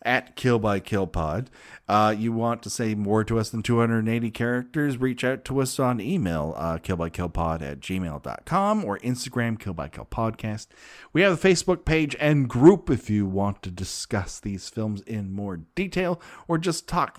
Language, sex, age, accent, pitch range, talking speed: English, male, 40-59, American, 95-140 Hz, 180 wpm